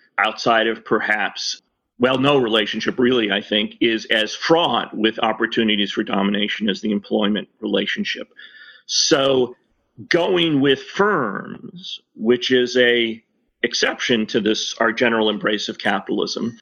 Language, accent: English, American